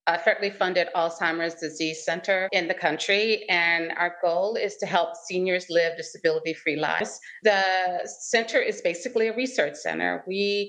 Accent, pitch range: American, 170-205 Hz